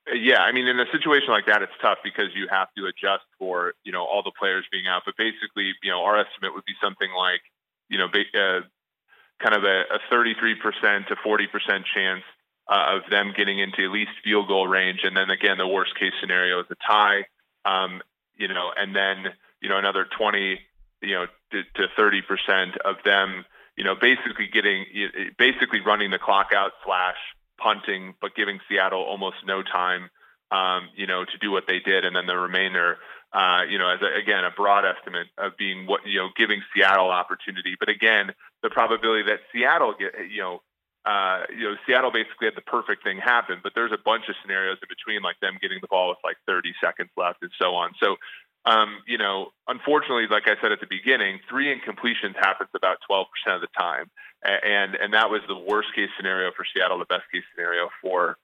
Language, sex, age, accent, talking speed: English, male, 20-39, American, 205 wpm